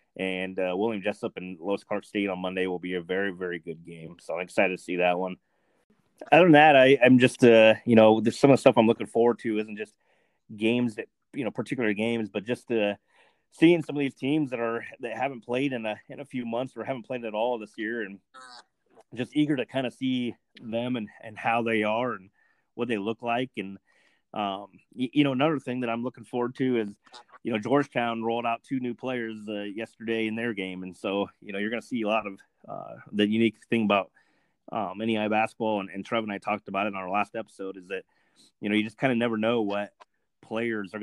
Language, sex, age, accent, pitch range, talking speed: English, male, 30-49, American, 100-120 Hz, 240 wpm